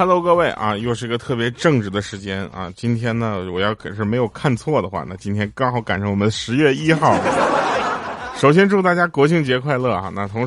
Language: Chinese